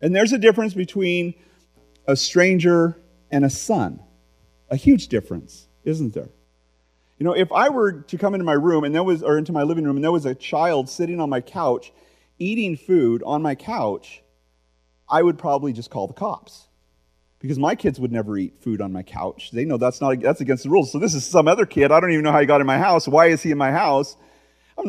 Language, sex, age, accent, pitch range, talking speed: English, male, 40-59, American, 120-170 Hz, 230 wpm